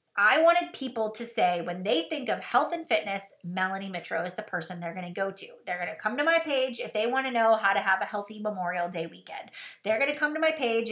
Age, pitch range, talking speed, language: 30-49, 200-240 Hz, 270 wpm, English